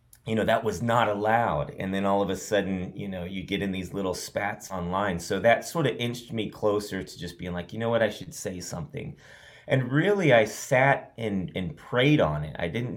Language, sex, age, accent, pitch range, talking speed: English, male, 30-49, American, 90-115 Hz, 230 wpm